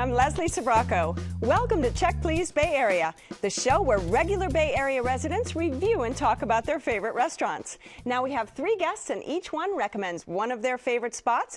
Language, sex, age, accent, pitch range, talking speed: English, female, 40-59, American, 215-345 Hz, 190 wpm